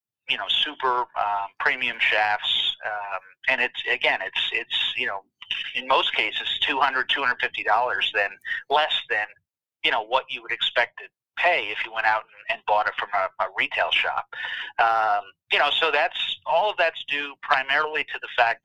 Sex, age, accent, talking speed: male, 30-49, American, 180 wpm